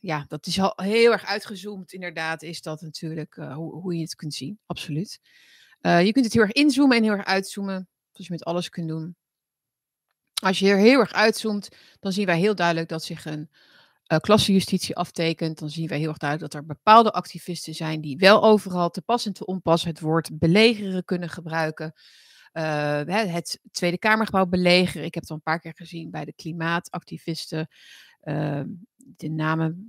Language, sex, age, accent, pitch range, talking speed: Dutch, female, 30-49, Dutch, 160-200 Hz, 190 wpm